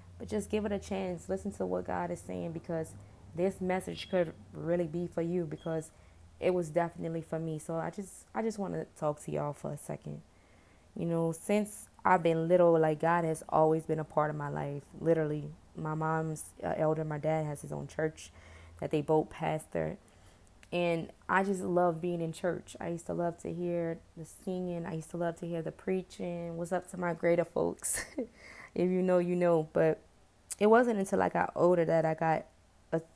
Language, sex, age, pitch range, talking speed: English, female, 20-39, 155-185 Hz, 205 wpm